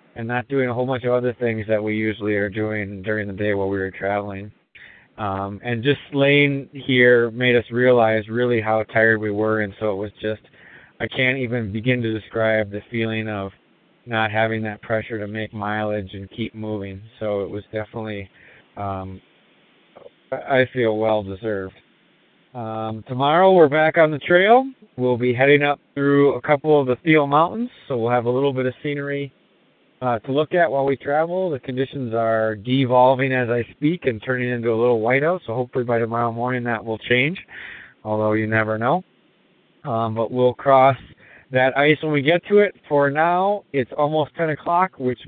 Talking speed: 185 wpm